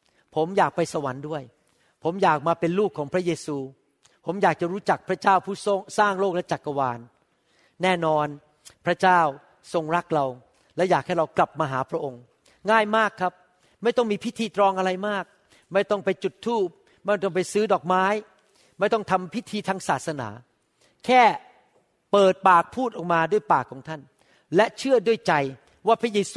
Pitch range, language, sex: 160-200 Hz, Thai, male